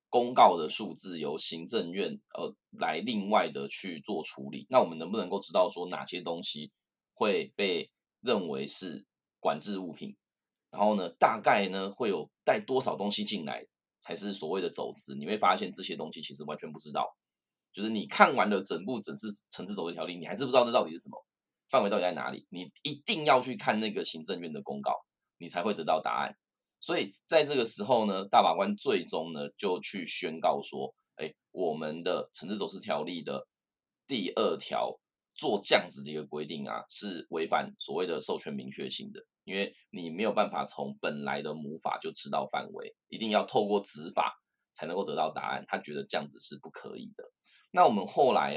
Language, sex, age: Chinese, male, 20-39